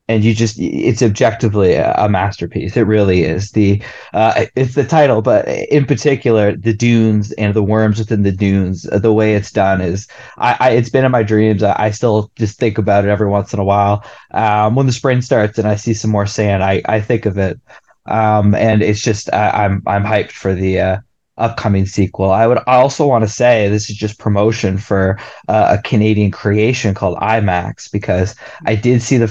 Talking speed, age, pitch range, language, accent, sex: 205 wpm, 20-39, 100-115 Hz, English, American, male